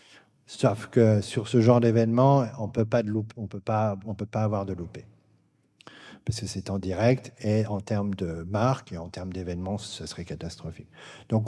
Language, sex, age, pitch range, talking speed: French, male, 40-59, 100-120 Hz, 200 wpm